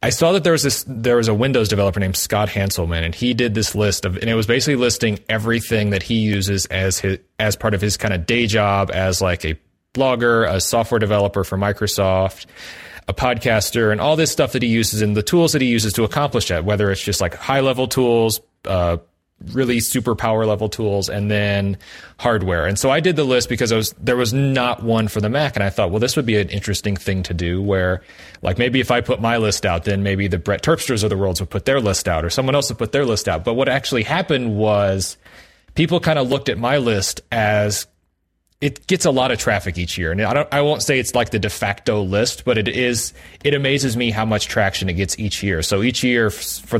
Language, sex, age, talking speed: English, male, 30-49, 240 wpm